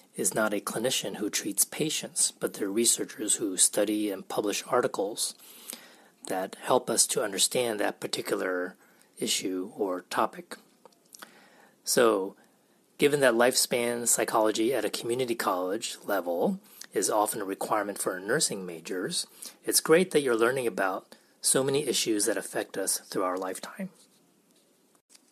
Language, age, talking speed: English, 30-49, 135 wpm